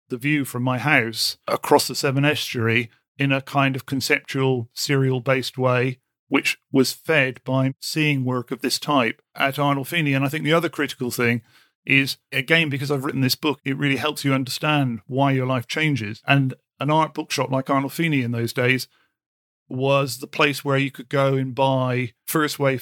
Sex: male